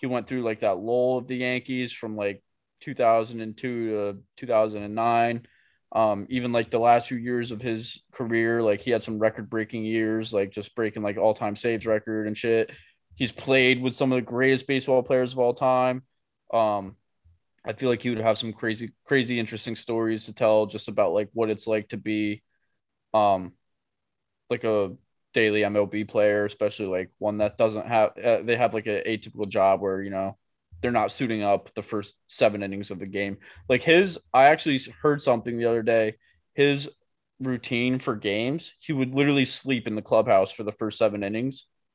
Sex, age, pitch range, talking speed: male, 20-39, 105-125 Hz, 190 wpm